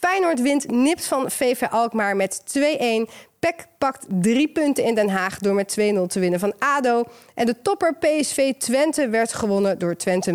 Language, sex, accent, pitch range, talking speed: Dutch, female, Dutch, 190-275 Hz, 180 wpm